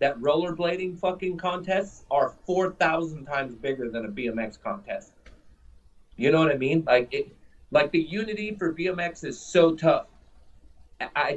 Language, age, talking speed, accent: English, 30-49, 150 wpm, American